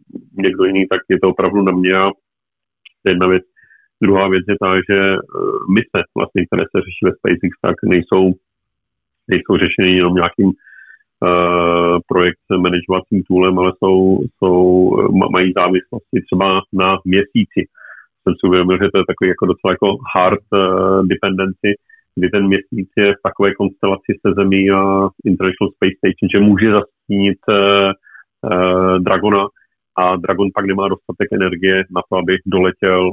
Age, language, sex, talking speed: 40-59, Czech, male, 150 wpm